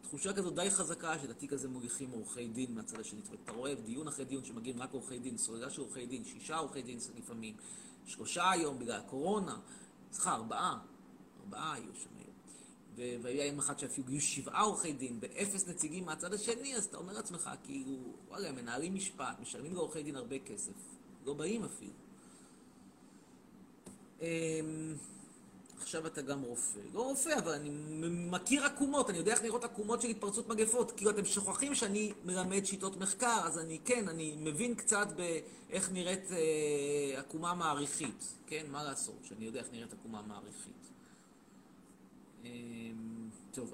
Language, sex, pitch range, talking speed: Hebrew, male, 135-200 Hz, 155 wpm